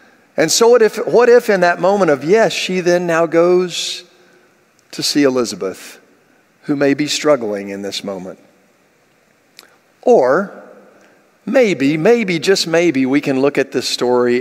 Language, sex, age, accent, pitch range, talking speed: English, male, 50-69, American, 125-180 Hz, 150 wpm